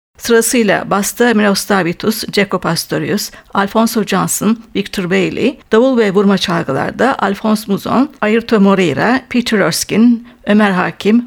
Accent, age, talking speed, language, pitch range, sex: native, 60-79, 110 wpm, Turkish, 205-245 Hz, female